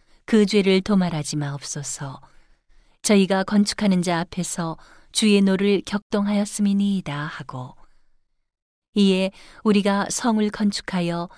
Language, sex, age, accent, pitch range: Korean, female, 40-59, native, 170-205 Hz